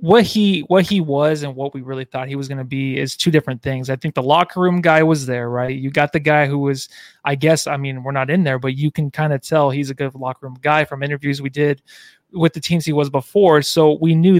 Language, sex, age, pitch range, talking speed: English, male, 20-39, 140-175 Hz, 280 wpm